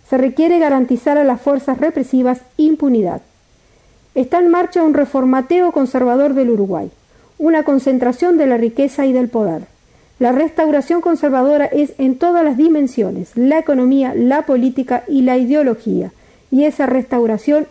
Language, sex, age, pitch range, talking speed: Spanish, female, 50-69, 250-295 Hz, 140 wpm